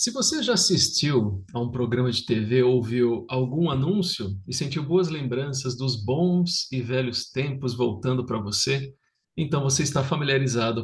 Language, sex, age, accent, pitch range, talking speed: Portuguese, male, 50-69, Brazilian, 125-185 Hz, 155 wpm